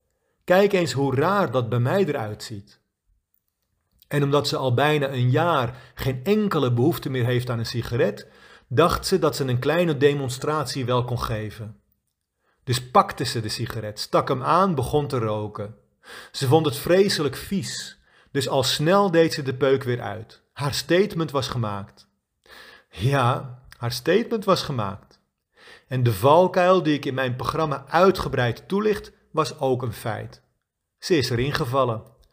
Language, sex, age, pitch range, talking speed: Dutch, male, 40-59, 120-175 Hz, 160 wpm